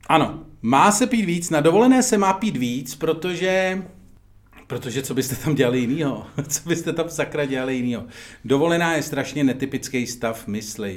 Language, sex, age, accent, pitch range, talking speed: Czech, male, 40-59, native, 110-125 Hz, 165 wpm